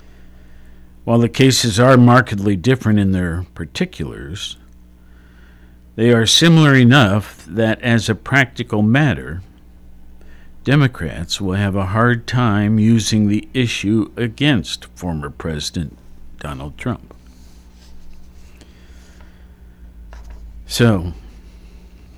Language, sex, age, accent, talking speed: English, male, 50-69, American, 90 wpm